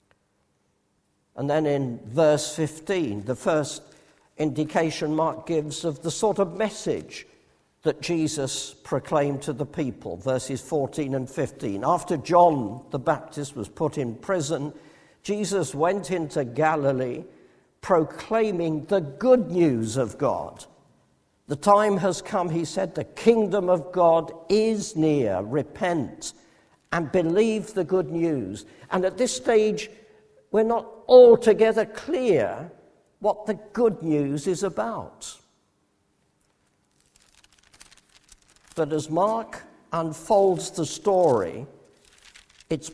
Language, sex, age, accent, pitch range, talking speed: English, male, 50-69, British, 140-190 Hz, 115 wpm